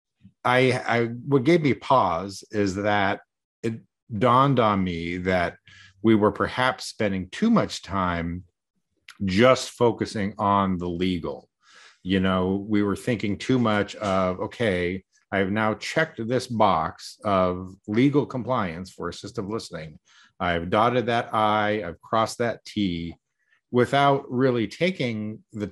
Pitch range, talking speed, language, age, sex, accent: 95-115 Hz, 135 wpm, English, 50-69, male, American